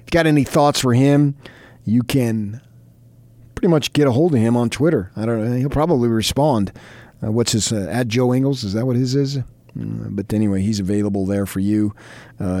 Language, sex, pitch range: English, male, 105-125 Hz